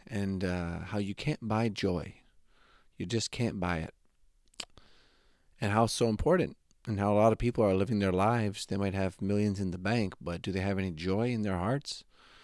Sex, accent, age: male, American, 30-49